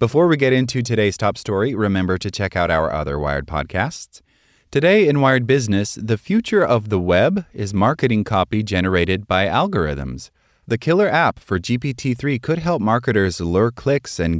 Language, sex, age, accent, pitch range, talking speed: English, male, 30-49, American, 95-125 Hz, 170 wpm